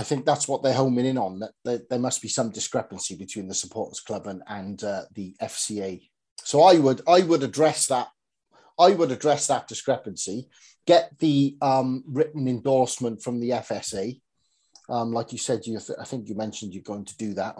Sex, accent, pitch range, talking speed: male, British, 115-145 Hz, 195 wpm